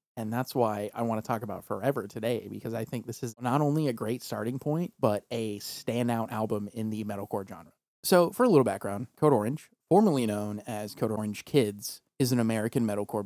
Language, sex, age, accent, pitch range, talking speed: English, male, 30-49, American, 105-125 Hz, 210 wpm